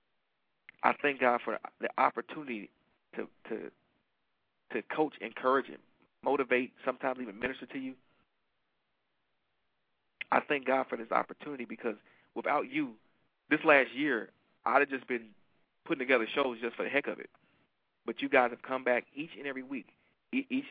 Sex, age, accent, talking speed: male, 40-59, American, 155 wpm